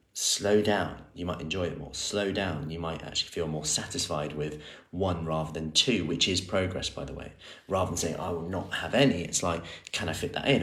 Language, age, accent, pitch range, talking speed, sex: English, 30-49, British, 80-95 Hz, 230 wpm, male